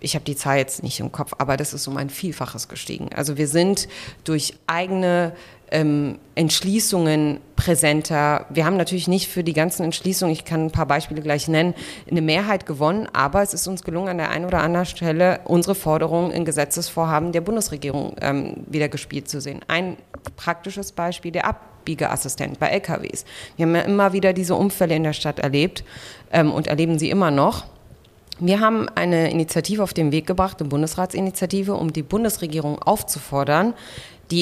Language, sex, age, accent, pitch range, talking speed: German, female, 30-49, German, 155-185 Hz, 180 wpm